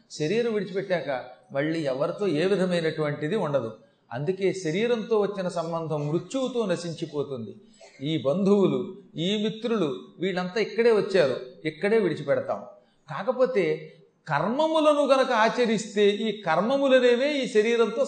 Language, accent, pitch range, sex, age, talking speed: Telugu, native, 160-220 Hz, male, 40-59, 100 wpm